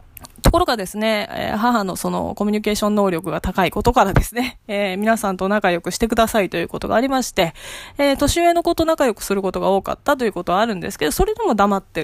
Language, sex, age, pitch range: Japanese, female, 20-39, 180-255 Hz